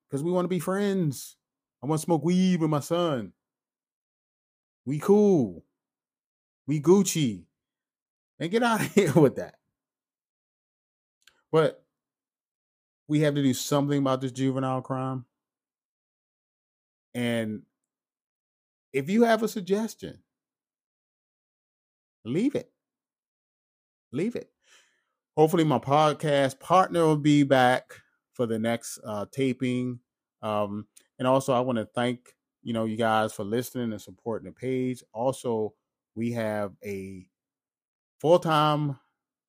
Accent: American